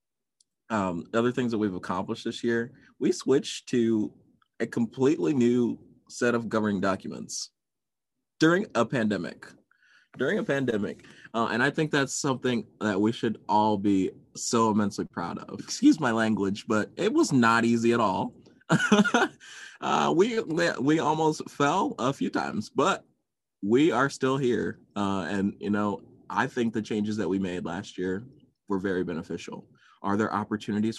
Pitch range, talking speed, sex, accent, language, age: 95-120 Hz, 155 wpm, male, American, English, 20-39